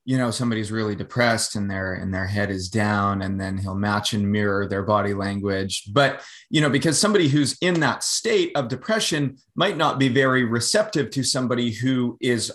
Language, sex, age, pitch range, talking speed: English, male, 20-39, 115-145 Hz, 190 wpm